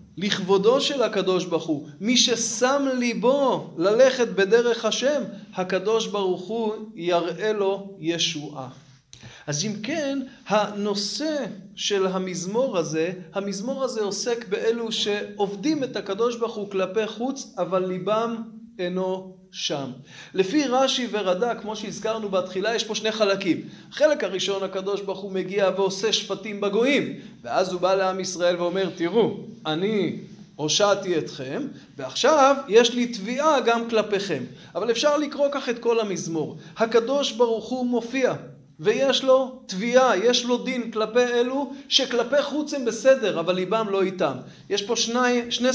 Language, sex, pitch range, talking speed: Hebrew, male, 190-245 Hz, 140 wpm